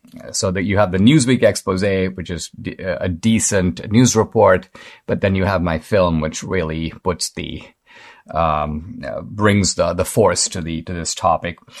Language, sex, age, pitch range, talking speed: English, male, 50-69, 100-135 Hz, 180 wpm